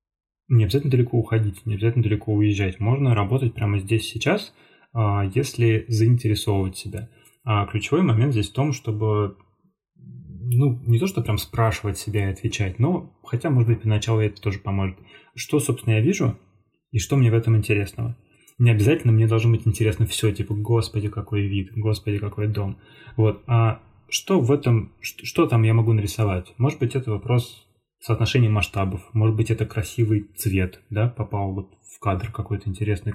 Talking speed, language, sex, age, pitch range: 165 wpm, Russian, male, 20-39, 105-120 Hz